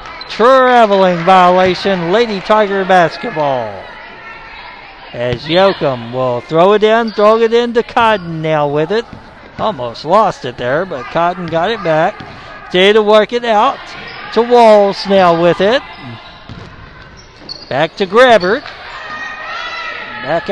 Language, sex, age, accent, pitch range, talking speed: English, male, 60-79, American, 175-230 Hz, 125 wpm